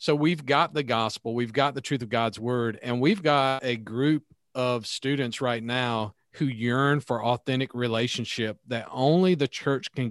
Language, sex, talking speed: English, male, 185 wpm